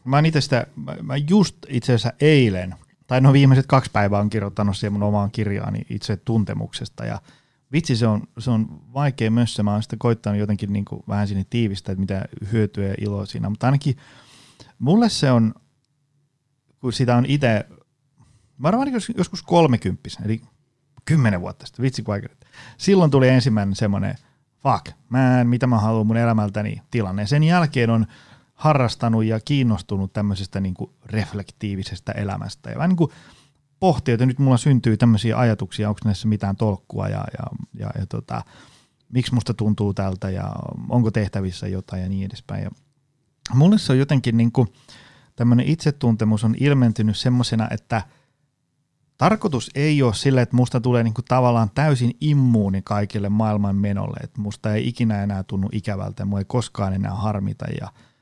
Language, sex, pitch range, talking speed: Finnish, male, 105-135 Hz, 155 wpm